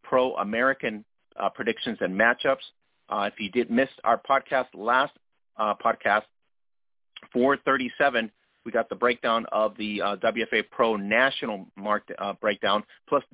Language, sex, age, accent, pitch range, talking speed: English, male, 40-59, American, 105-120 Hz, 140 wpm